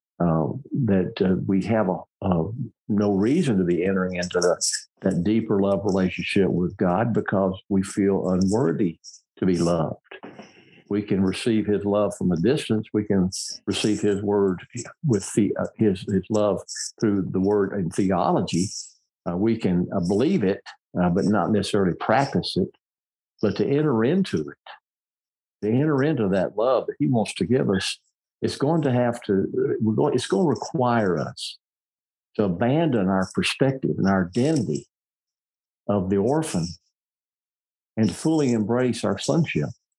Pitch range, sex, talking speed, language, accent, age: 95-120 Hz, male, 160 wpm, English, American, 50-69